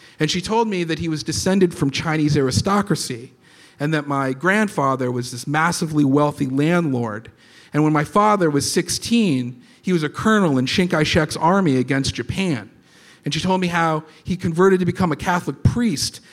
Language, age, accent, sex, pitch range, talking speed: English, 40-59, American, male, 130-175 Hz, 175 wpm